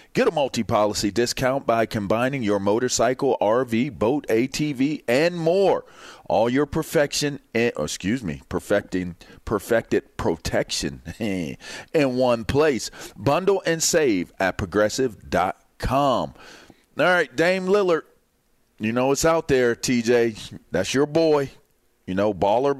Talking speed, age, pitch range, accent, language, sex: 120 wpm, 40-59, 115-155 Hz, American, English, male